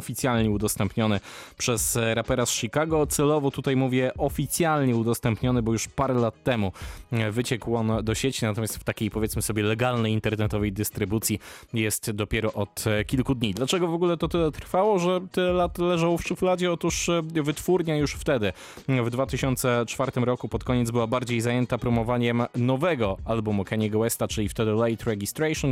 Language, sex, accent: Polish, male, native